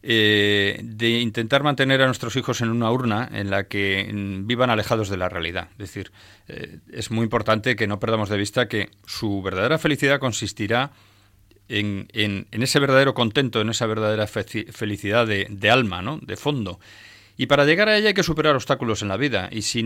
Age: 30-49